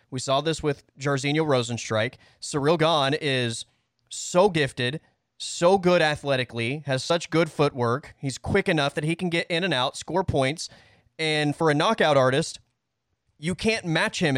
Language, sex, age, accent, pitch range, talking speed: English, male, 30-49, American, 125-180 Hz, 165 wpm